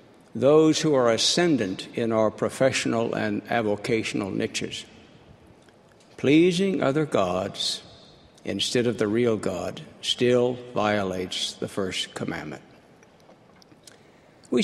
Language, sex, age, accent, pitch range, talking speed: English, male, 60-79, American, 110-135 Hz, 100 wpm